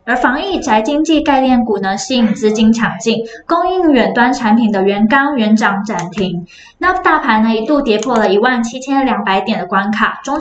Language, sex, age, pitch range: Chinese, female, 10-29, 215-280 Hz